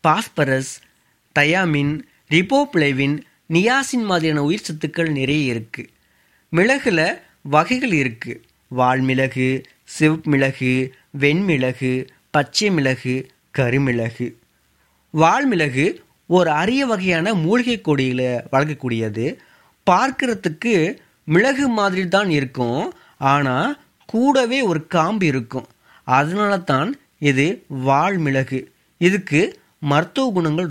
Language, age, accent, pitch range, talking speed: Tamil, 30-49, native, 135-195 Hz, 80 wpm